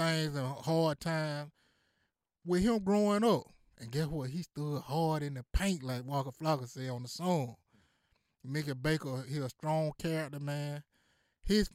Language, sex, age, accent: English, male, 20-39, American